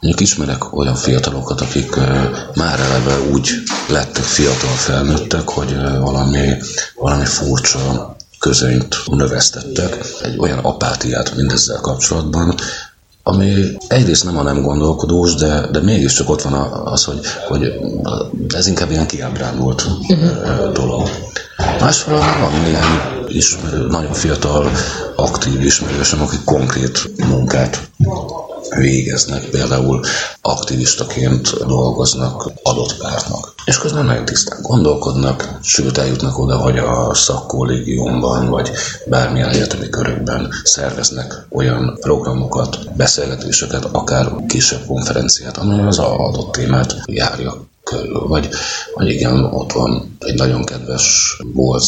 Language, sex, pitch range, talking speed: Hungarian, male, 65-75 Hz, 110 wpm